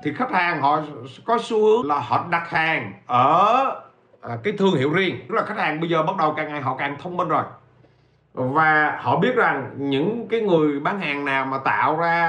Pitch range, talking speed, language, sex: 135-185 Hz, 215 wpm, Vietnamese, male